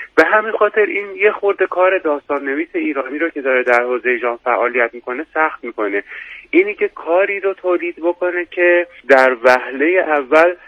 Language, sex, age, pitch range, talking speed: Persian, male, 30-49, 125-180 Hz, 170 wpm